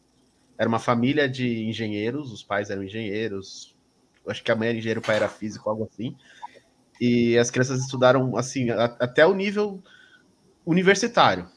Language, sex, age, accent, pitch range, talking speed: Portuguese, male, 20-39, Brazilian, 125-185 Hz, 155 wpm